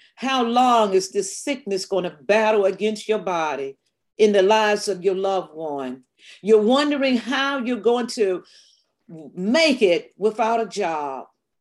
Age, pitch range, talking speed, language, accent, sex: 50-69, 210-270 Hz, 150 wpm, English, American, female